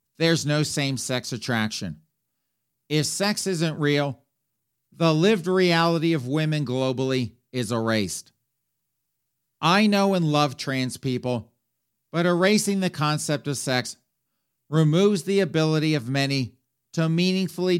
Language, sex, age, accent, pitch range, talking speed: English, male, 50-69, American, 125-160 Hz, 120 wpm